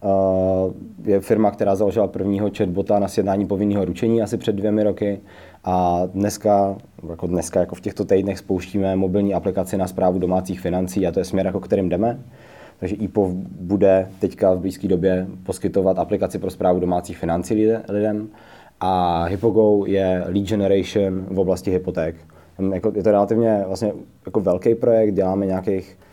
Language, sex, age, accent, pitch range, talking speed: Czech, male, 20-39, native, 90-100 Hz, 160 wpm